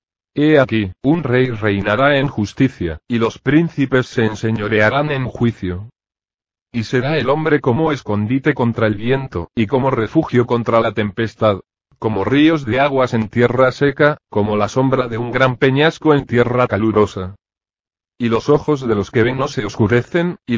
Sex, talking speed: male, 165 wpm